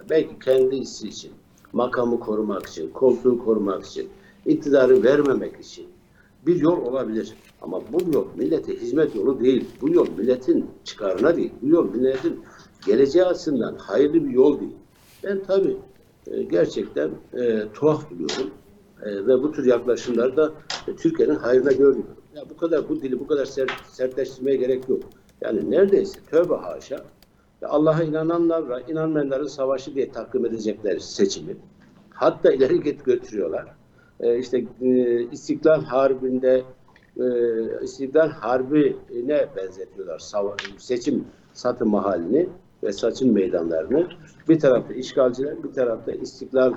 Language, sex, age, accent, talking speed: Turkish, male, 60-79, native, 120 wpm